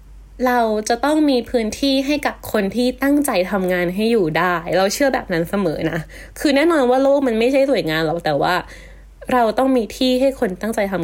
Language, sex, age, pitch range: Thai, female, 20-39, 200-280 Hz